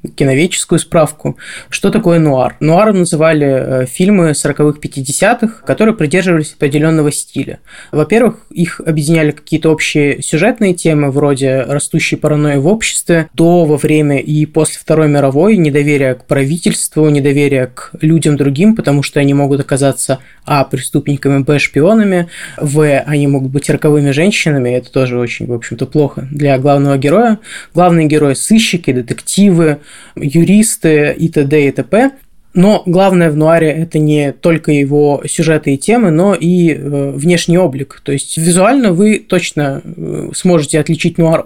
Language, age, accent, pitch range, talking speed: Russian, 20-39, native, 145-175 Hz, 135 wpm